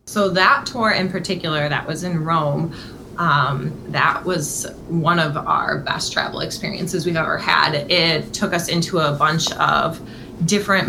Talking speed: 160 wpm